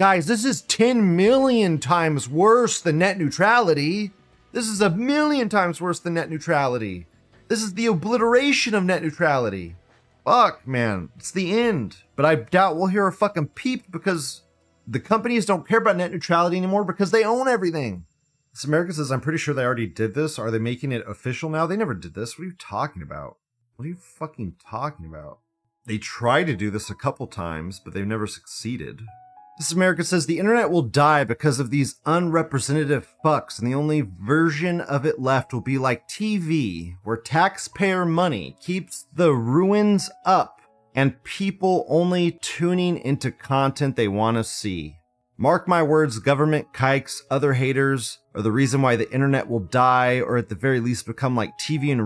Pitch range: 120-175 Hz